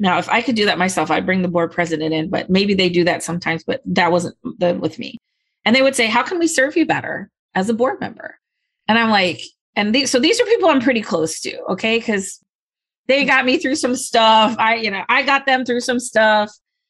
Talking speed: 245 wpm